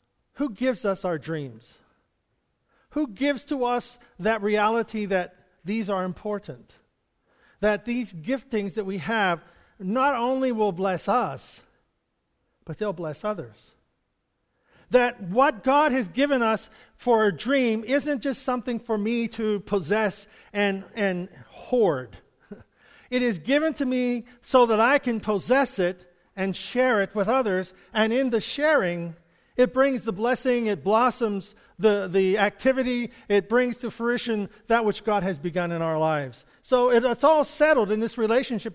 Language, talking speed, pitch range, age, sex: English, 150 wpm, 190-245 Hz, 50-69, male